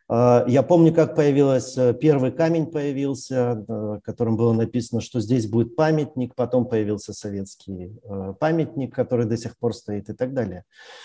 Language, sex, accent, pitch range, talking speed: Russian, male, native, 115-145 Hz, 140 wpm